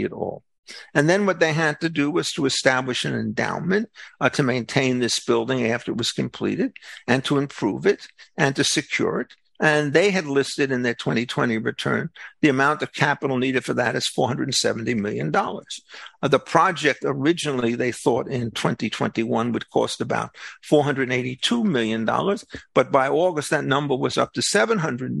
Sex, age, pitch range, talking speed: male, 50-69, 130-155 Hz, 170 wpm